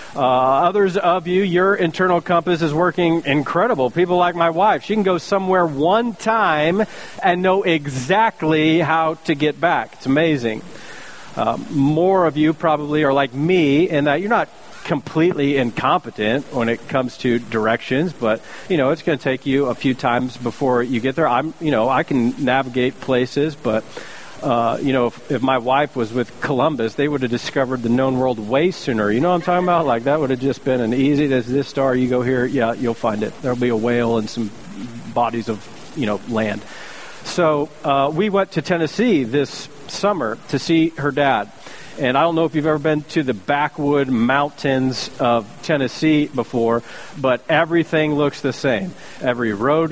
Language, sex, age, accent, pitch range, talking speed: English, male, 40-59, American, 130-165 Hz, 190 wpm